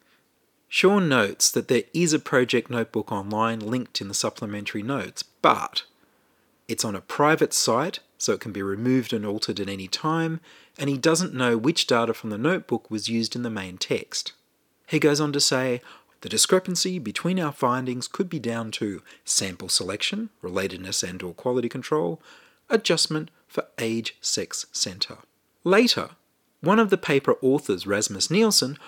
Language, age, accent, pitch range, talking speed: English, 40-59, Australian, 115-180 Hz, 165 wpm